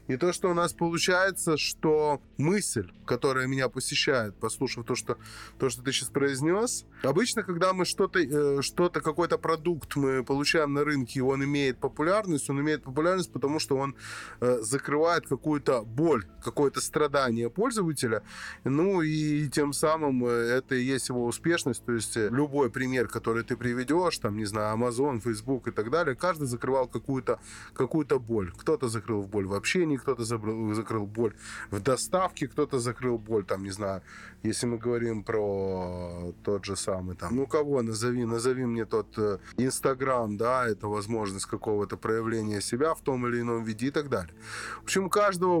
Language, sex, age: Russian, male, 20-39